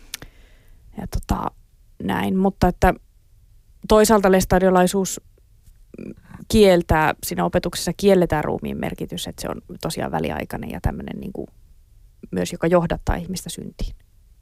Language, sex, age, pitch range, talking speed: Finnish, female, 30-49, 155-185 Hz, 110 wpm